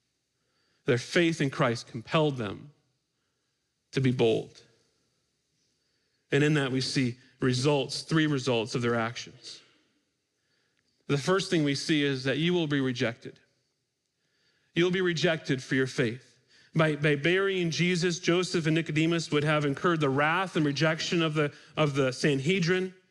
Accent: American